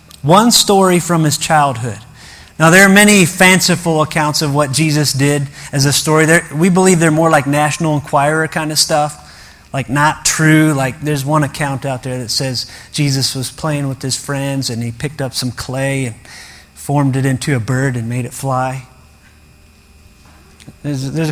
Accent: American